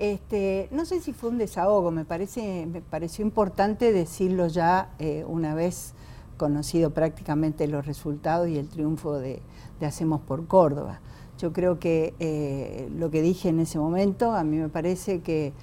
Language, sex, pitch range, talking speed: Spanish, female, 155-205 Hz, 170 wpm